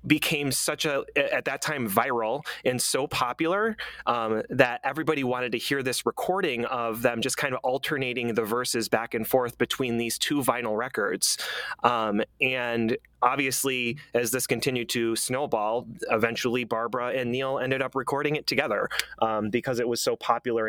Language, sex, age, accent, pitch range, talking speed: English, male, 30-49, American, 120-135 Hz, 165 wpm